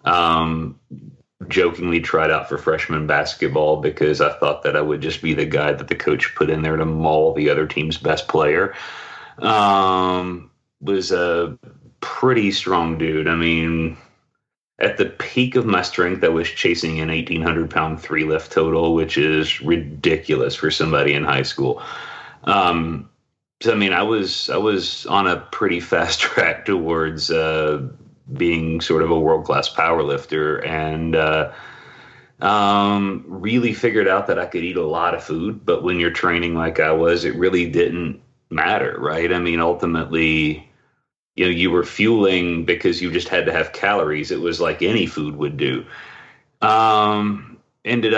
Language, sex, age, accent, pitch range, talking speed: English, male, 30-49, American, 80-90 Hz, 165 wpm